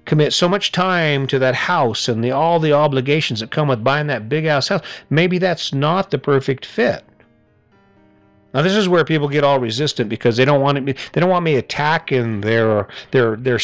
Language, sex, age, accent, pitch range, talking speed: English, male, 50-69, American, 120-155 Hz, 200 wpm